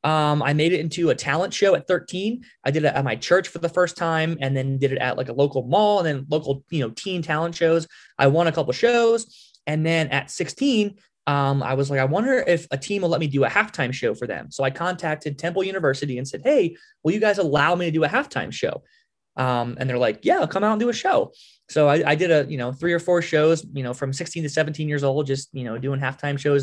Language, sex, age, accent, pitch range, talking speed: English, male, 20-39, American, 135-170 Hz, 270 wpm